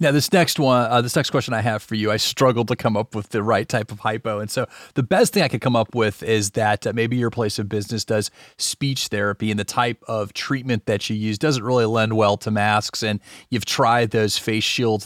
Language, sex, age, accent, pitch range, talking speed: English, male, 30-49, American, 110-135 Hz, 255 wpm